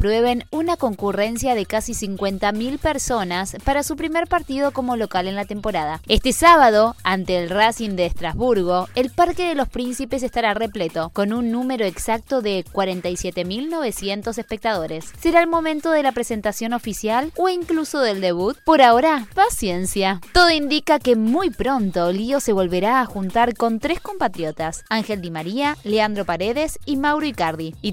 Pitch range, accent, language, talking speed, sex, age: 200-275 Hz, Argentinian, Spanish, 155 wpm, female, 20-39